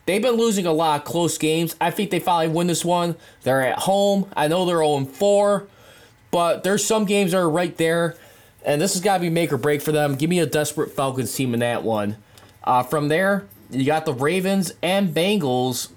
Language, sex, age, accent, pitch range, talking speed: English, male, 20-39, American, 130-170 Hz, 220 wpm